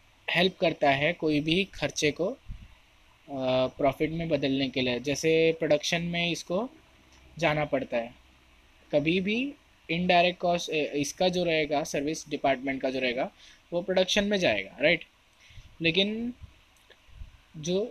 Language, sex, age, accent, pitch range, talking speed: Hindi, male, 20-39, native, 150-195 Hz, 125 wpm